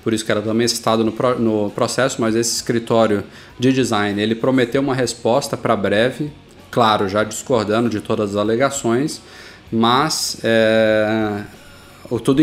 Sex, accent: male, Brazilian